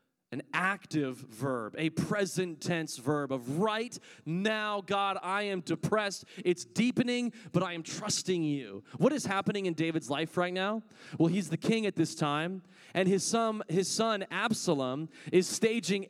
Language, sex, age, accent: English, male, 30-49, American